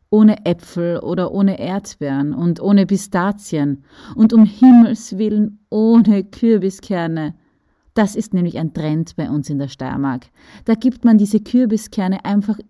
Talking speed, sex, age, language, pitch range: 140 wpm, female, 30-49, German, 175-235 Hz